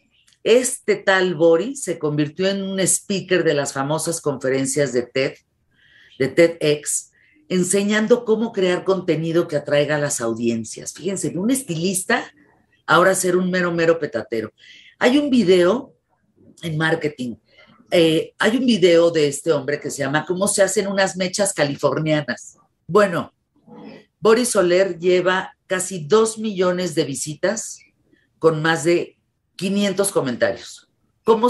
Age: 40-59